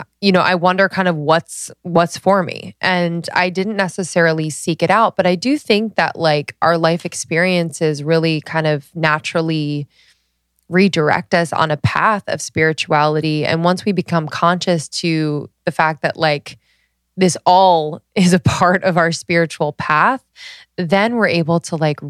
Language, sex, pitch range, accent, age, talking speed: English, female, 150-175 Hz, American, 20-39, 165 wpm